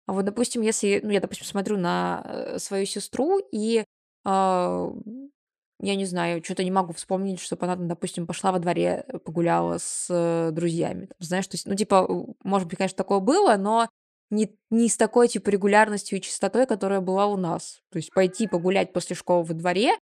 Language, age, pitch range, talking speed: Russian, 20-39, 180-215 Hz, 180 wpm